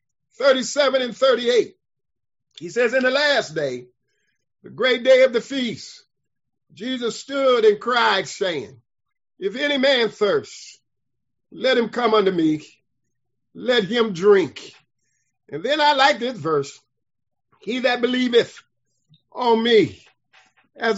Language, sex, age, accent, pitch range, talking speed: English, male, 50-69, American, 175-265 Hz, 125 wpm